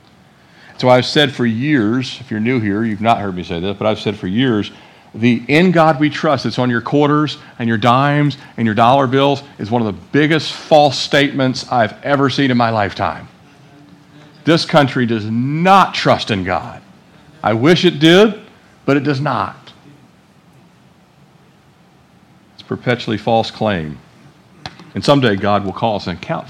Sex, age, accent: male, 50-69, American